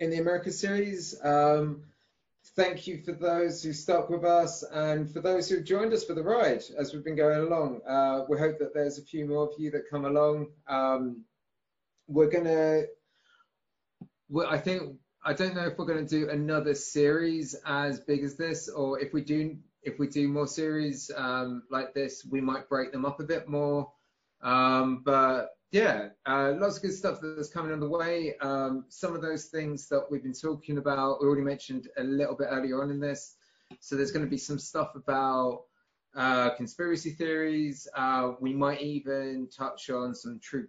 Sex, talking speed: male, 190 wpm